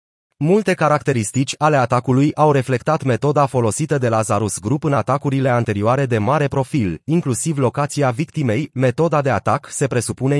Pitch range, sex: 120-155 Hz, male